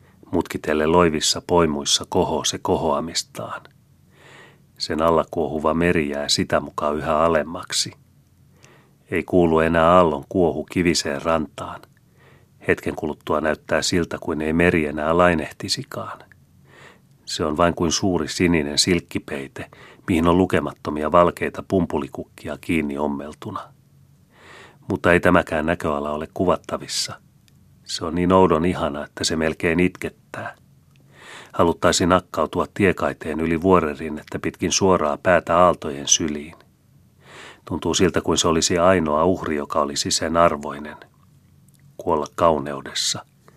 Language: Finnish